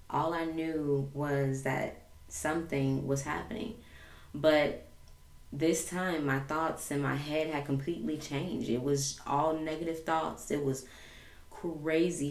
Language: English